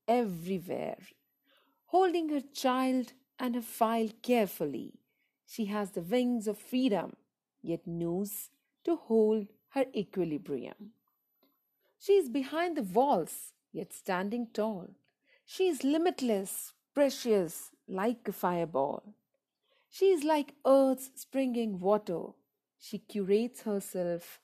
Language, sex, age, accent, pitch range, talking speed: Hindi, female, 50-69, native, 195-275 Hz, 110 wpm